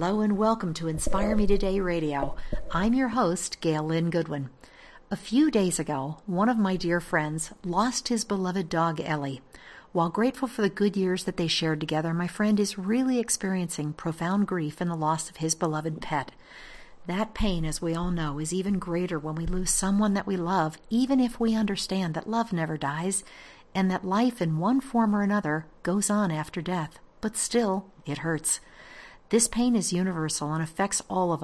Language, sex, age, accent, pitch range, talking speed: English, female, 50-69, American, 160-205 Hz, 190 wpm